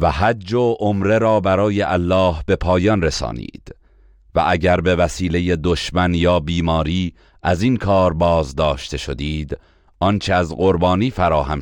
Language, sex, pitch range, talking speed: Persian, male, 80-95 Hz, 135 wpm